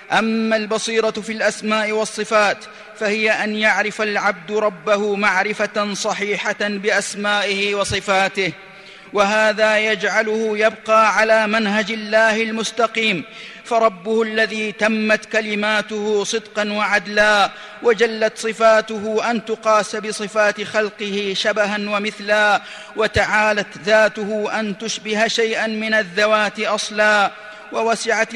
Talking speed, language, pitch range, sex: 95 wpm, Arabic, 210-225 Hz, male